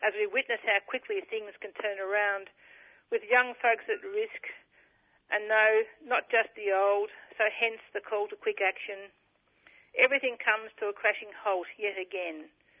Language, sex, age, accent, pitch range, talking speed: English, female, 50-69, Australian, 200-265 Hz, 165 wpm